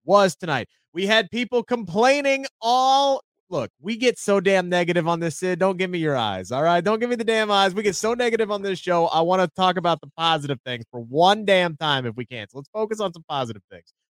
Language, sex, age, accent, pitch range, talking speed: English, male, 30-49, American, 175-245 Hz, 245 wpm